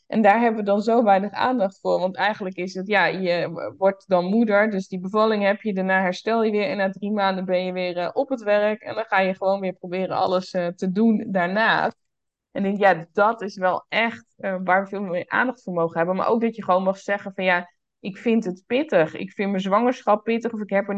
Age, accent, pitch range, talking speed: 20-39, Dutch, 190-230 Hz, 255 wpm